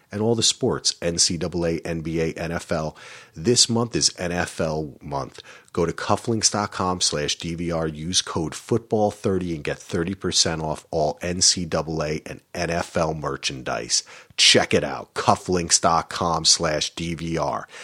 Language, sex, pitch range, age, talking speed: English, male, 90-140 Hz, 40-59, 110 wpm